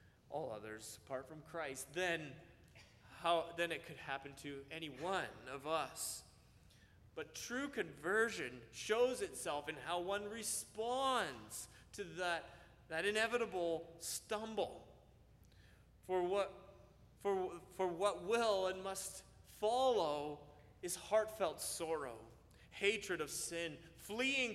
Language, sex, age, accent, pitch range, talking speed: English, male, 30-49, American, 155-205 Hz, 110 wpm